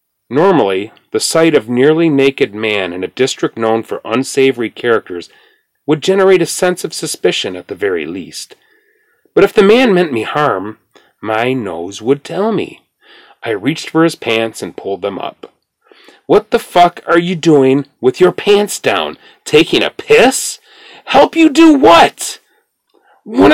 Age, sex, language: 40-59, male, English